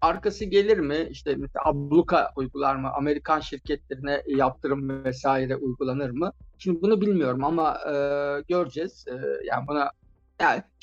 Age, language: 50-69, Turkish